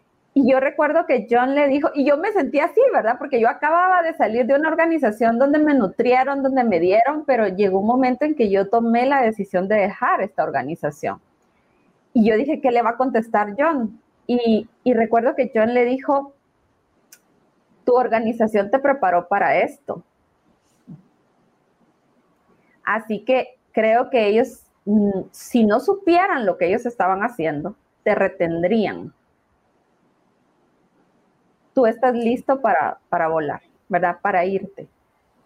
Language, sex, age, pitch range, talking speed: Spanish, female, 30-49, 205-265 Hz, 145 wpm